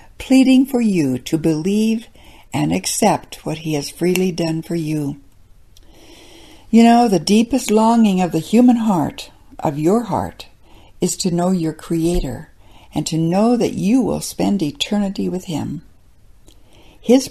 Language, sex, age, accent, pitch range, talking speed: English, female, 60-79, American, 145-205 Hz, 145 wpm